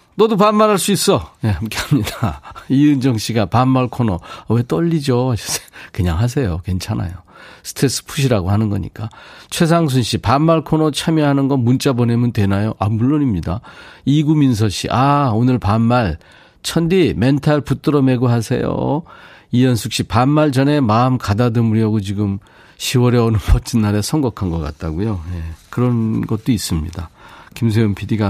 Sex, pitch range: male, 105-140 Hz